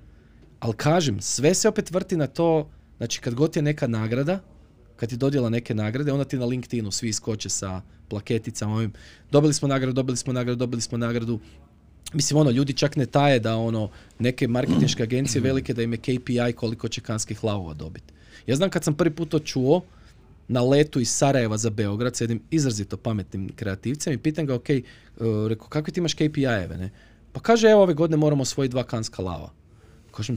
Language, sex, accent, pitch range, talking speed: Croatian, male, native, 105-140 Hz, 190 wpm